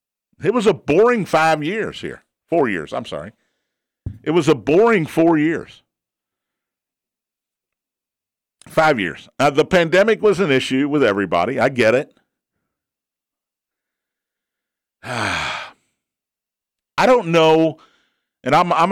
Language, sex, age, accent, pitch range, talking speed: English, male, 50-69, American, 135-175 Hz, 105 wpm